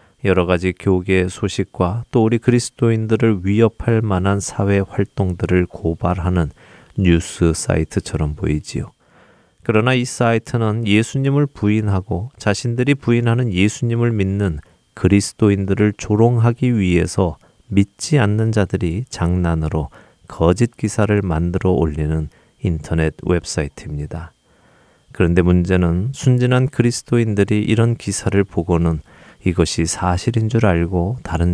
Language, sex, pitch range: Korean, male, 90-115 Hz